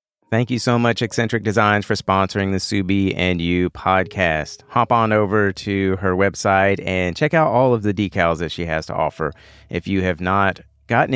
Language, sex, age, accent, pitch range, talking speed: English, male, 40-59, American, 95-115 Hz, 195 wpm